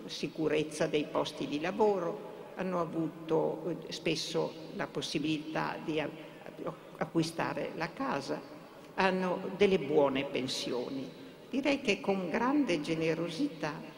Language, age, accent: Italian, 50-69, native